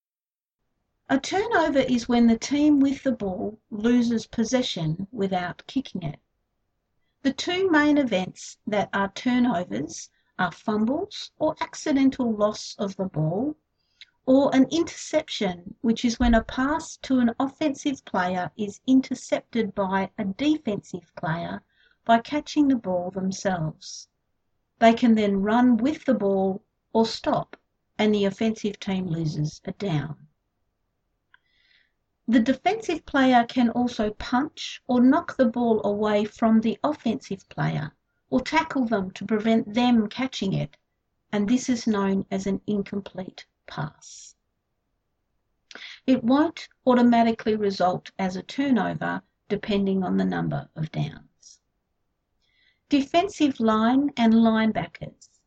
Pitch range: 195-265 Hz